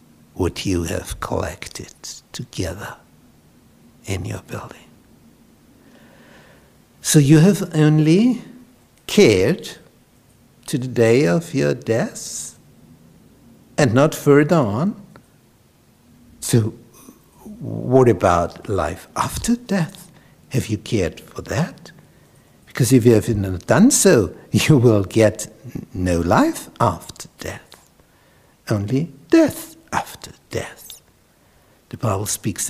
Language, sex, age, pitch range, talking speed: English, male, 60-79, 110-155 Hz, 100 wpm